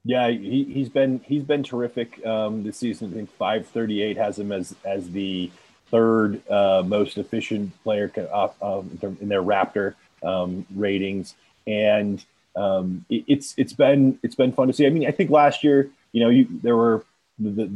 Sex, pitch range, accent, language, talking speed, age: male, 95-115 Hz, American, English, 180 wpm, 30-49